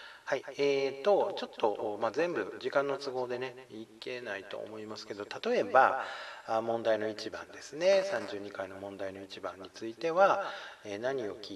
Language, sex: Japanese, male